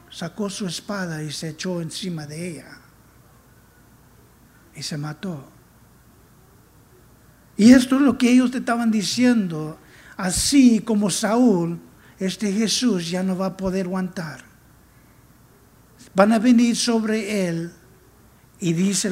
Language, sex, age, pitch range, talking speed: English, male, 60-79, 155-215 Hz, 120 wpm